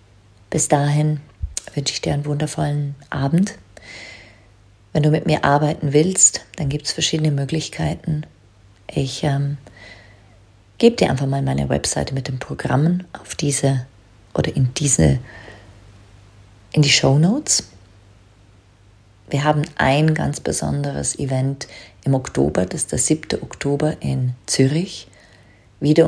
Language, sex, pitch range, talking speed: German, female, 105-155 Hz, 125 wpm